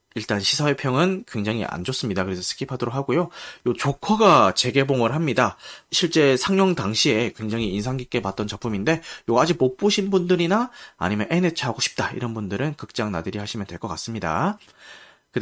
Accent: native